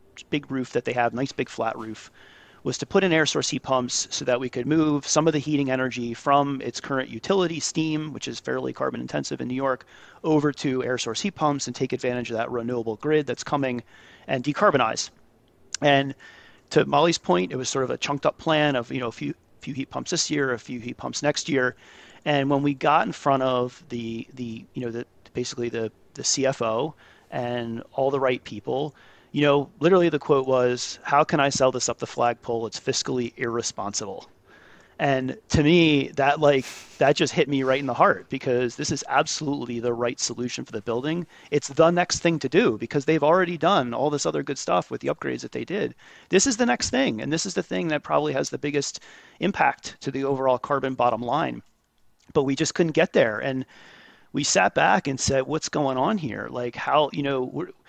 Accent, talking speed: American, 215 wpm